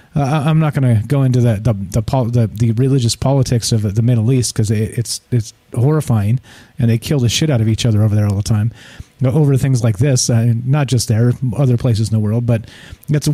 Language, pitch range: English, 115-140 Hz